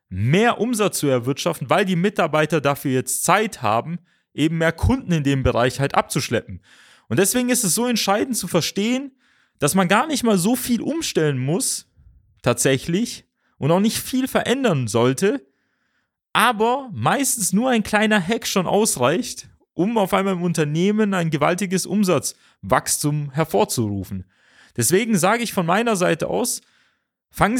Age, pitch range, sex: 30-49, 140-215 Hz, male